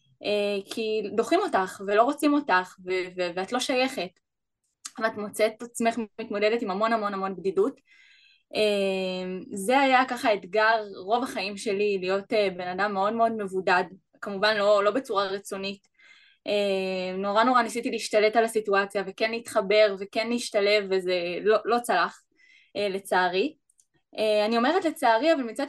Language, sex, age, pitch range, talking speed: Hebrew, female, 20-39, 195-245 Hz, 140 wpm